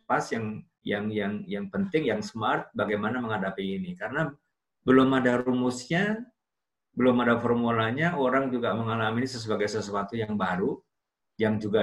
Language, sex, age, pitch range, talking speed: Malay, male, 50-69, 105-145 Hz, 135 wpm